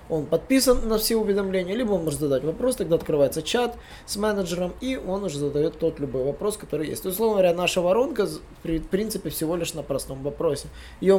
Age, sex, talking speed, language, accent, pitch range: 20-39, male, 200 wpm, Russian, native, 140-185 Hz